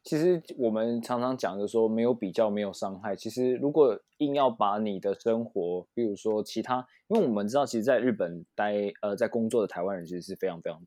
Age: 20-39